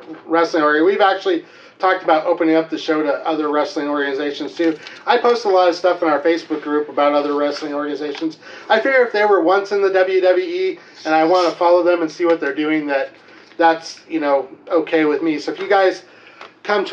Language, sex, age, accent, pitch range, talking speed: English, male, 30-49, American, 160-195 Hz, 220 wpm